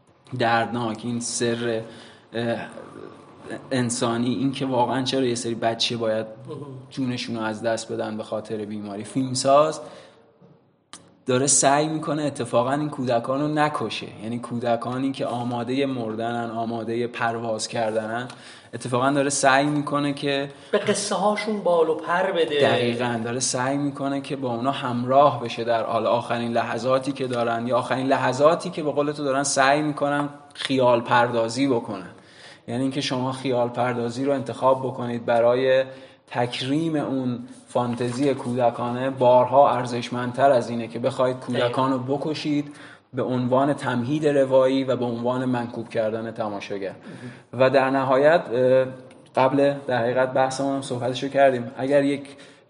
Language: Persian